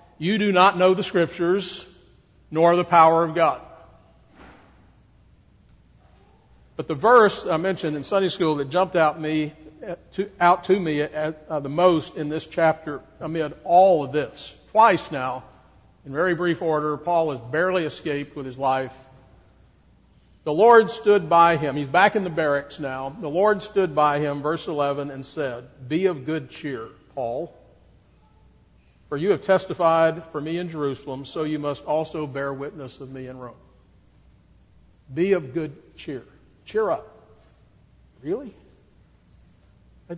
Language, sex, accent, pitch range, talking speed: English, male, American, 145-185 Hz, 150 wpm